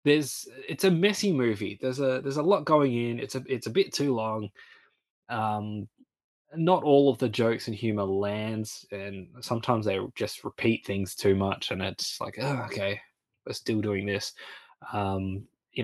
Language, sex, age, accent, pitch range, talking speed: English, male, 20-39, Australian, 105-140 Hz, 180 wpm